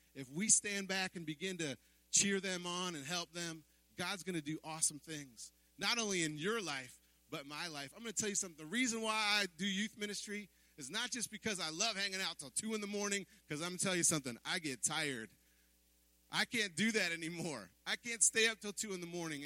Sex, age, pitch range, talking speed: male, 30-49, 165-215 Hz, 235 wpm